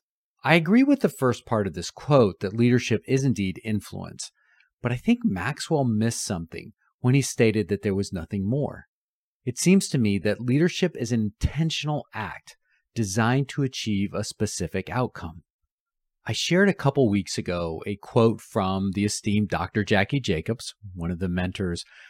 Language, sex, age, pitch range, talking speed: English, male, 40-59, 100-140 Hz, 170 wpm